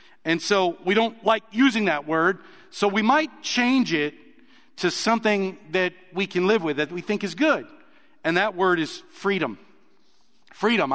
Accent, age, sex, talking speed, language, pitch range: American, 50-69, male, 170 wpm, English, 160-230 Hz